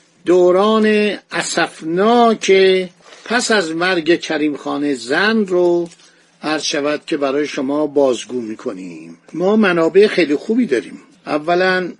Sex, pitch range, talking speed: male, 145-180 Hz, 115 wpm